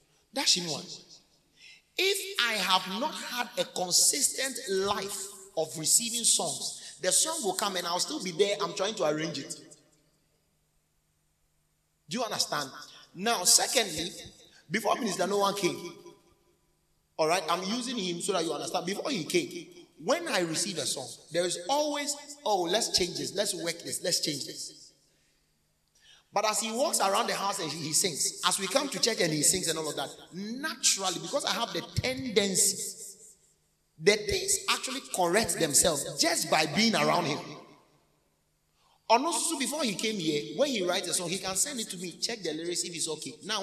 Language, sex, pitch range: English, male, 170-235 Hz